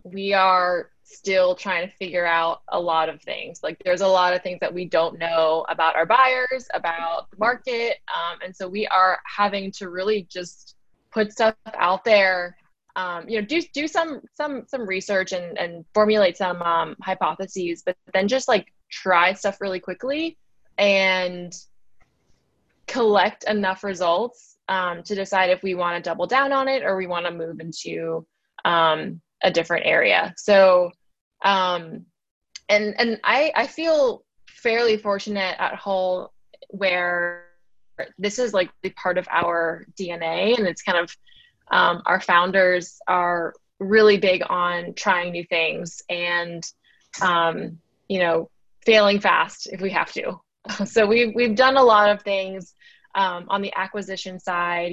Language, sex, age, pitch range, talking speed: English, female, 20-39, 175-210 Hz, 160 wpm